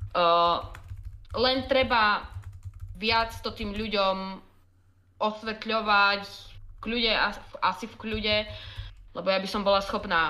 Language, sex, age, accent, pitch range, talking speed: Czech, female, 20-39, native, 180-230 Hz, 105 wpm